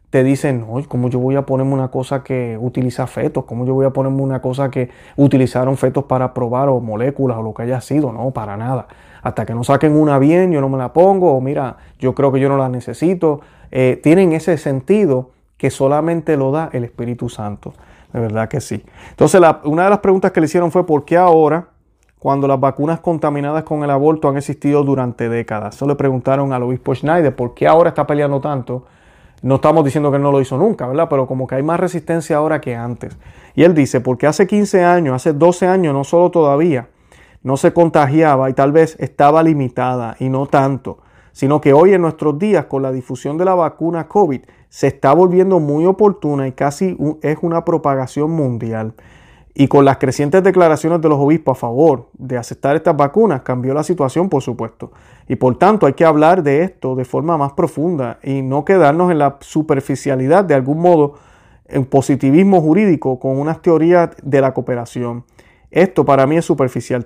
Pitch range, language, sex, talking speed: 130-160 Hz, Spanish, male, 200 wpm